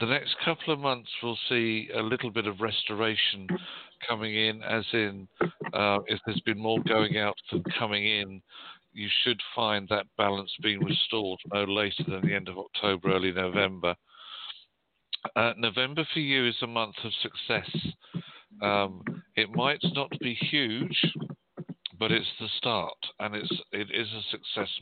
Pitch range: 95-115 Hz